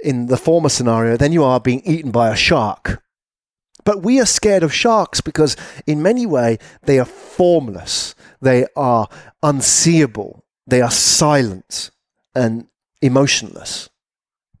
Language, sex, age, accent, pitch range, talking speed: English, male, 40-59, British, 130-170 Hz, 135 wpm